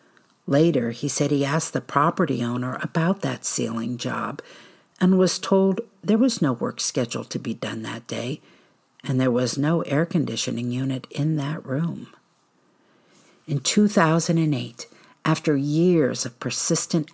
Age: 50-69